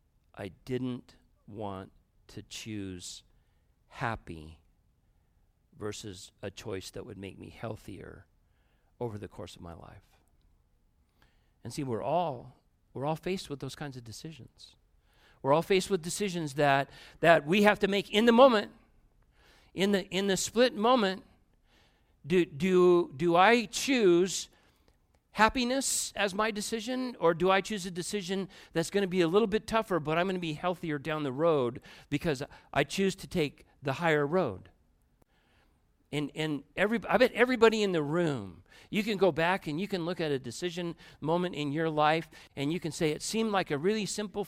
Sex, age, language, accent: male, 50-69, English, American